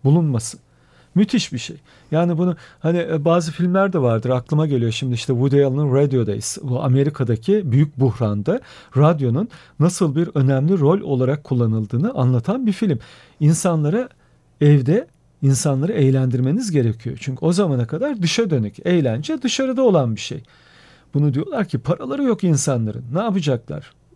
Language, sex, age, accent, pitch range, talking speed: Turkish, male, 40-59, native, 130-180 Hz, 140 wpm